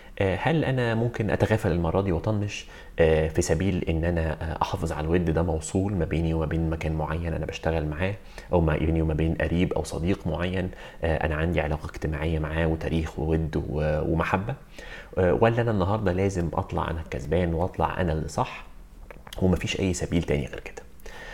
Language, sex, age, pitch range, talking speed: Arabic, male, 30-49, 80-105 Hz, 170 wpm